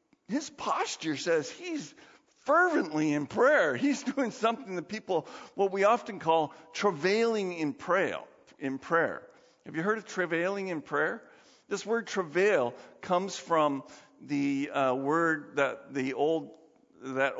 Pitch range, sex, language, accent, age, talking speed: 140-230 Hz, male, English, American, 50-69, 140 wpm